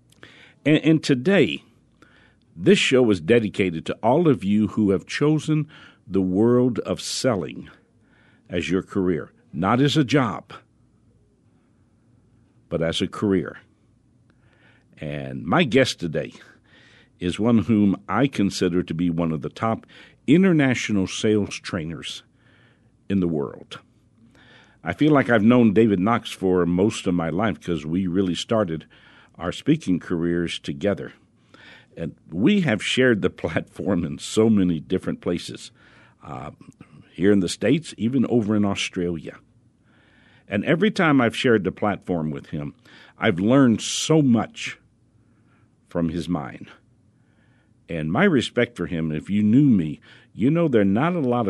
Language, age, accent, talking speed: English, 60-79, American, 140 wpm